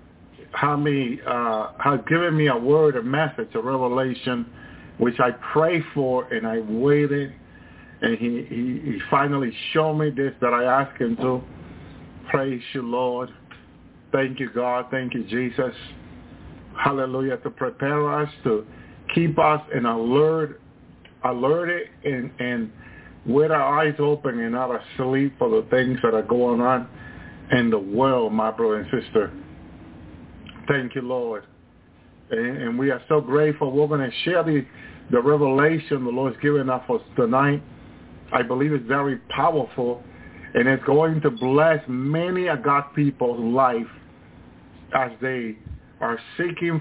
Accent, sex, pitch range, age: American, male, 120-145 Hz, 50-69